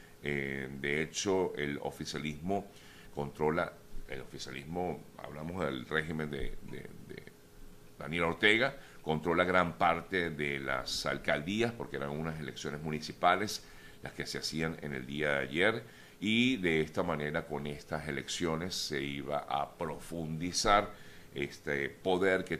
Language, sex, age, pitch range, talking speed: Spanish, male, 50-69, 70-90 Hz, 130 wpm